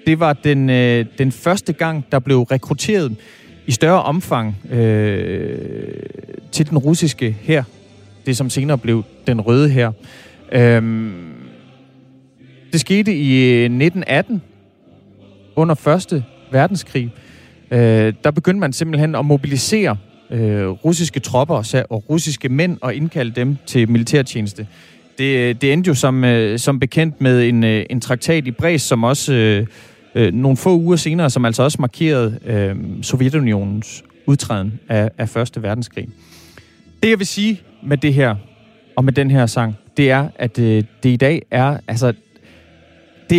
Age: 30-49